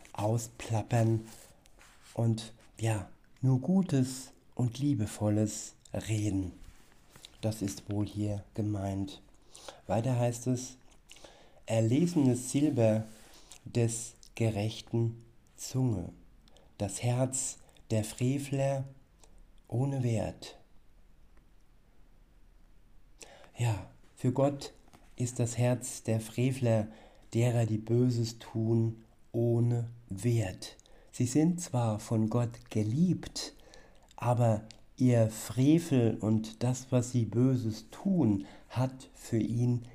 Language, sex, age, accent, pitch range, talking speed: German, male, 50-69, German, 110-130 Hz, 90 wpm